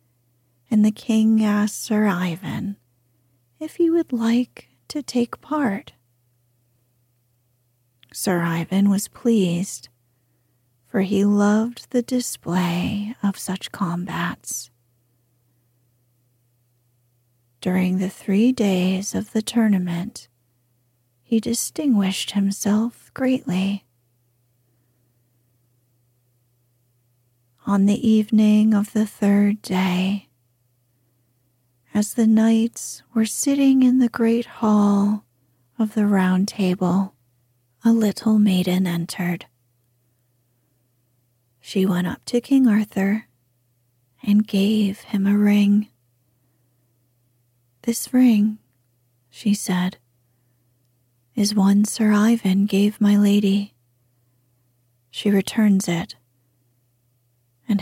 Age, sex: 40-59, female